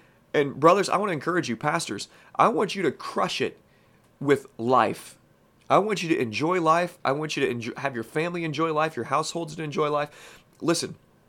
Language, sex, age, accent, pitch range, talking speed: English, male, 30-49, American, 115-155 Hz, 200 wpm